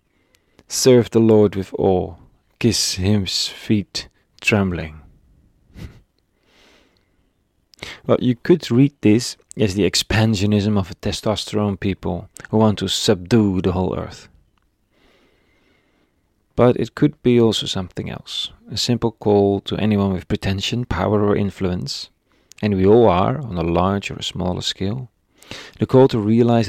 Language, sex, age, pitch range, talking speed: English, male, 30-49, 90-110 Hz, 135 wpm